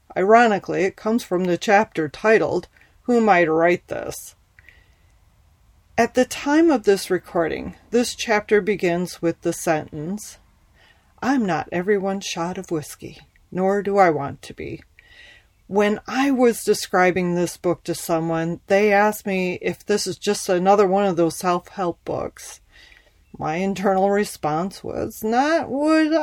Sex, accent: female, American